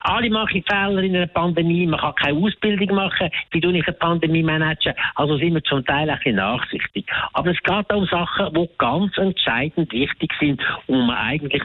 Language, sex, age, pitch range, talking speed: German, male, 60-79, 145-200 Hz, 200 wpm